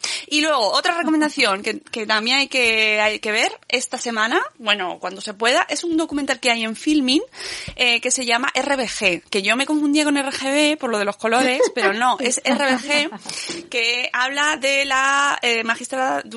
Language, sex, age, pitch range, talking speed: Spanish, female, 20-39, 205-260 Hz, 190 wpm